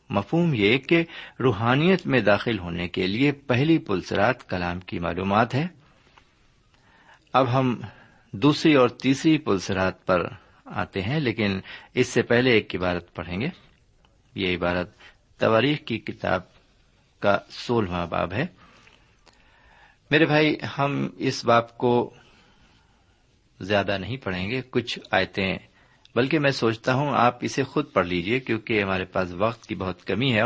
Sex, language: male, Urdu